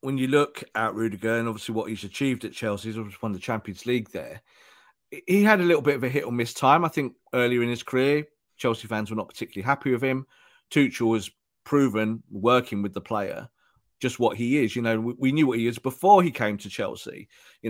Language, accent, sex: English, British, male